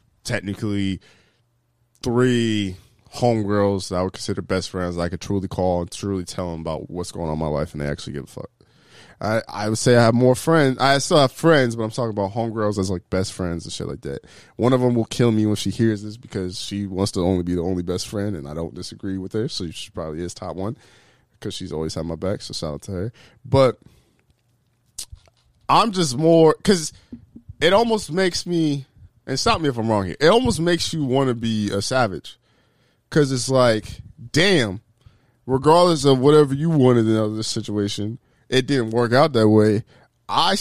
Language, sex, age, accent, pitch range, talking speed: English, male, 20-39, American, 100-135 Hz, 215 wpm